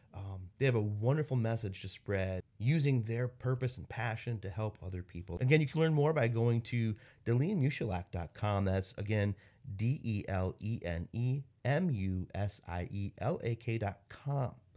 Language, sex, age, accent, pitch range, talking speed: English, male, 30-49, American, 100-125 Hz, 120 wpm